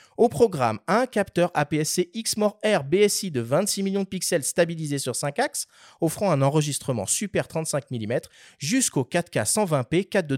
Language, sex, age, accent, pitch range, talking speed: French, male, 30-49, French, 135-200 Hz, 155 wpm